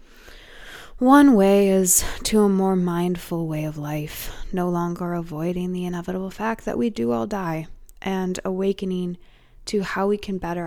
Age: 20-39